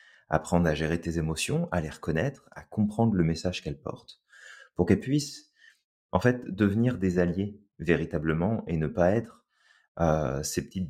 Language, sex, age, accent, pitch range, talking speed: French, male, 30-49, French, 80-95 Hz, 165 wpm